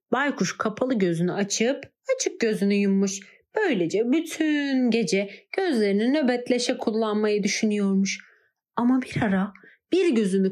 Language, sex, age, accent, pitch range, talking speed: Turkish, female, 40-59, native, 210-300 Hz, 110 wpm